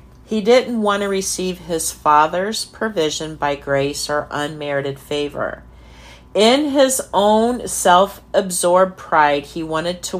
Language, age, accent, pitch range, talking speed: English, 50-69, American, 145-200 Hz, 125 wpm